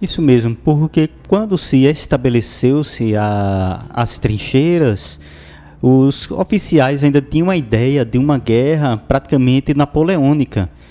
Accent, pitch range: Brazilian, 110-145 Hz